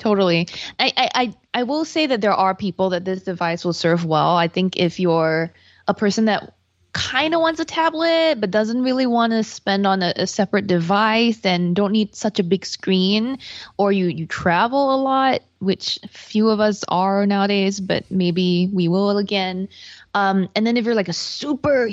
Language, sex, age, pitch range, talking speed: English, female, 20-39, 180-225 Hz, 190 wpm